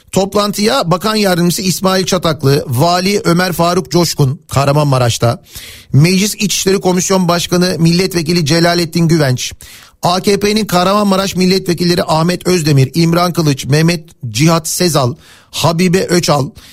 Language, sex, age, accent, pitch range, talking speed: Turkish, male, 40-59, native, 150-200 Hz, 105 wpm